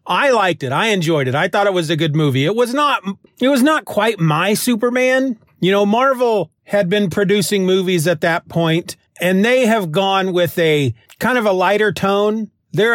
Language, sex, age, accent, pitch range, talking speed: English, male, 40-59, American, 150-205 Hz, 205 wpm